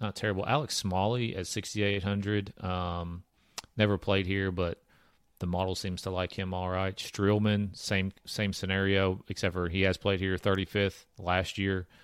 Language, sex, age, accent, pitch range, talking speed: English, male, 40-59, American, 90-105 Hz, 160 wpm